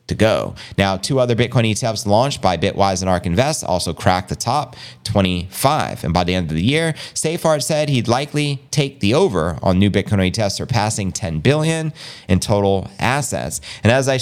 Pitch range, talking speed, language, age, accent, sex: 95-135 Hz, 190 wpm, English, 30-49, American, male